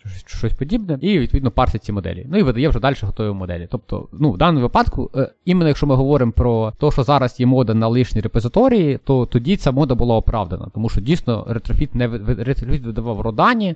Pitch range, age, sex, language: 110-140 Hz, 20-39, male, Ukrainian